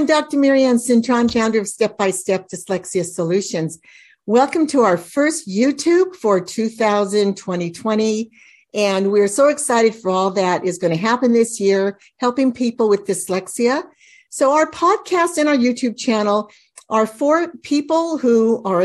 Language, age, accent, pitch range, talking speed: English, 60-79, American, 200-260 Hz, 145 wpm